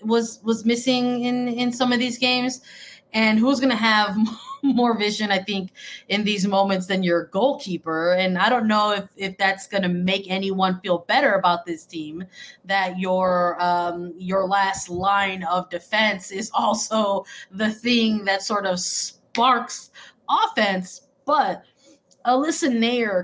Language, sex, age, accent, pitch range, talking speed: English, female, 20-39, American, 185-230 Hz, 155 wpm